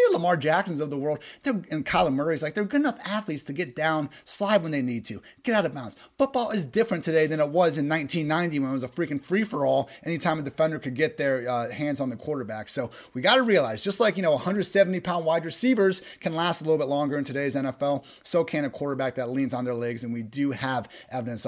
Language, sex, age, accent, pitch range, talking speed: English, male, 30-49, American, 140-180 Hz, 250 wpm